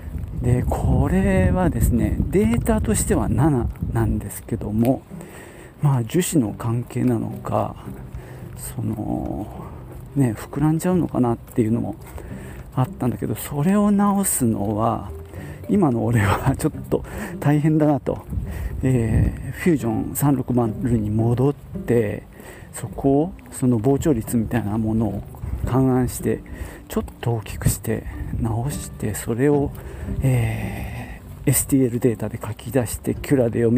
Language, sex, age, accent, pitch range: Japanese, male, 40-59, native, 105-135 Hz